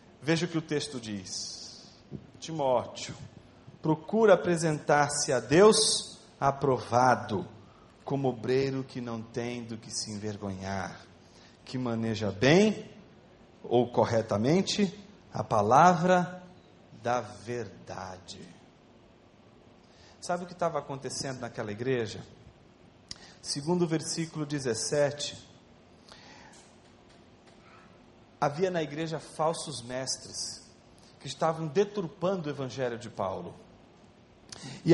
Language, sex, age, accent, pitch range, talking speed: Portuguese, male, 40-59, Brazilian, 130-175 Hz, 95 wpm